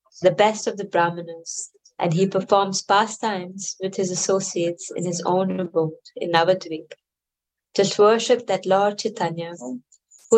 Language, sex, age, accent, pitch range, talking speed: English, female, 20-39, Indian, 175-220 Hz, 145 wpm